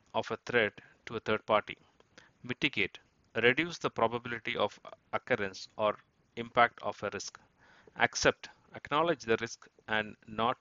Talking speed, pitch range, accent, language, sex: 135 wpm, 105-125 Hz, Indian, English, male